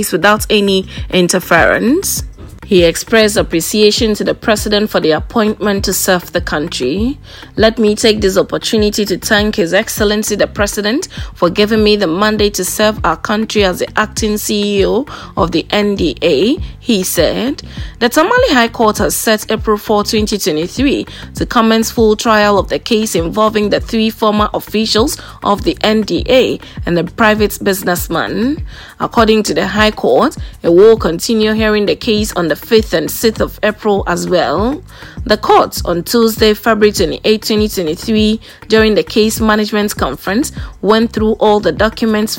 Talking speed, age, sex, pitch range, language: 155 wpm, 20-39, female, 195-220 Hz, English